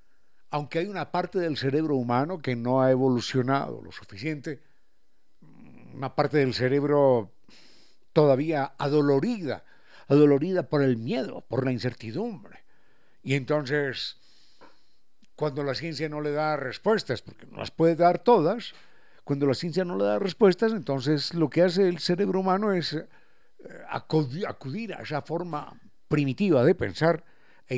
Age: 60-79